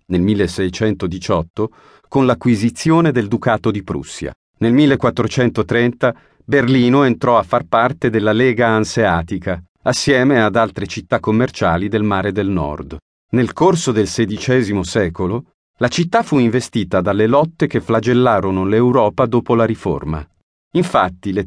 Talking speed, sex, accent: 130 wpm, male, native